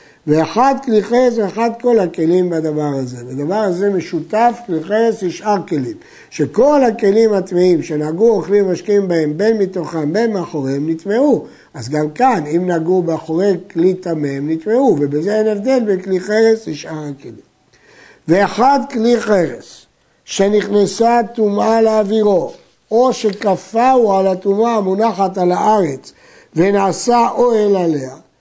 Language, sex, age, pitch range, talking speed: Hebrew, male, 60-79, 160-220 Hz, 130 wpm